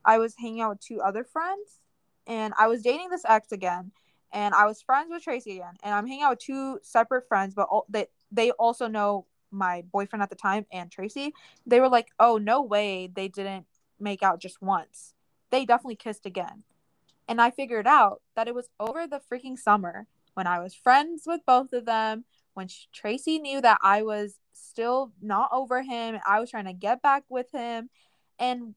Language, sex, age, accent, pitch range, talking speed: English, female, 20-39, American, 195-255 Hz, 205 wpm